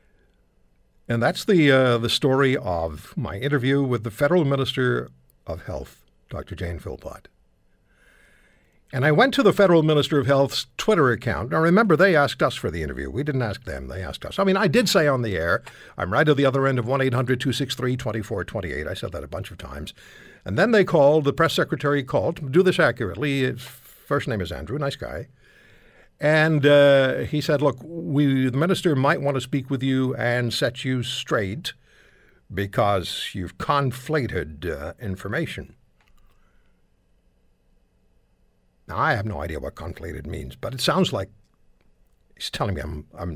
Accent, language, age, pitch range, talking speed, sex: American, English, 60-79, 100-145 Hz, 170 wpm, male